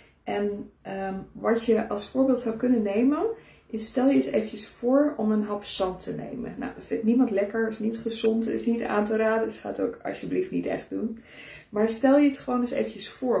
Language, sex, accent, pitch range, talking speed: Dutch, female, Dutch, 200-235 Hz, 225 wpm